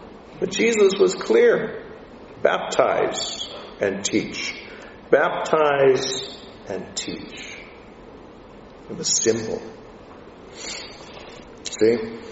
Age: 50-69